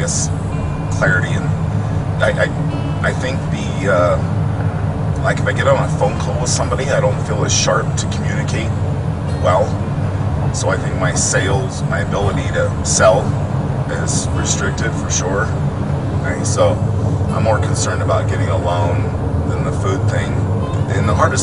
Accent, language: American, English